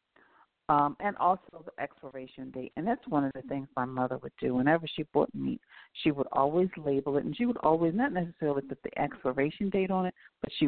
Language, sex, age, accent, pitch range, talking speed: English, female, 50-69, American, 140-170 Hz, 220 wpm